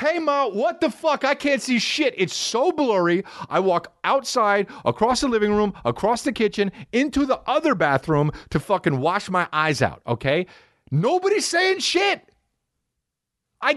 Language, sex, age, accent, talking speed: English, male, 40-59, American, 160 wpm